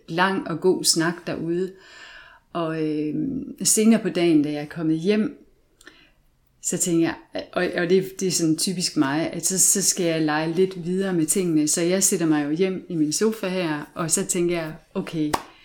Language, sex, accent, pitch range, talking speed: Danish, female, native, 155-190 Hz, 200 wpm